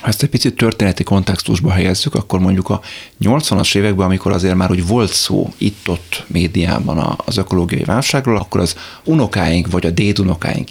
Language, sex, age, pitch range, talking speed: Hungarian, male, 30-49, 90-105 Hz, 155 wpm